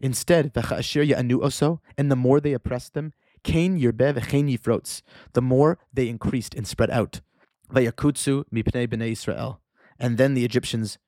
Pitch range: 115-140 Hz